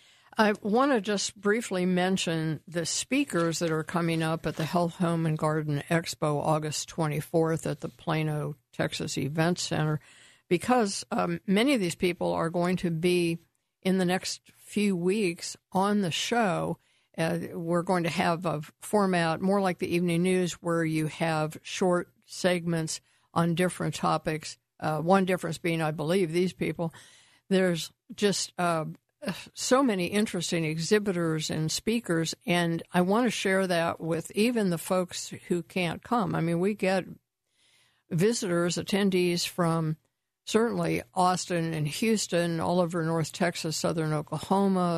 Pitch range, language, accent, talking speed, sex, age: 160-190 Hz, English, American, 150 wpm, female, 60-79